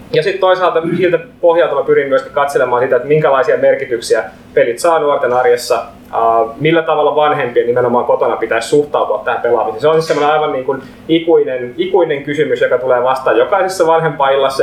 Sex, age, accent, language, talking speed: male, 20-39, native, Finnish, 170 wpm